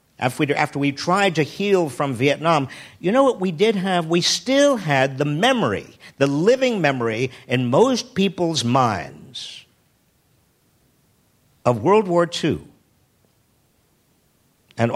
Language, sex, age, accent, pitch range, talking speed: English, male, 50-69, American, 125-180 Hz, 120 wpm